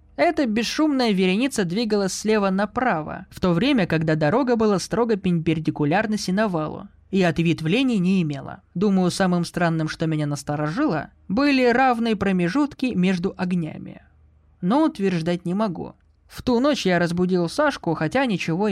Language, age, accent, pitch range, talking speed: Russian, 20-39, native, 160-230 Hz, 140 wpm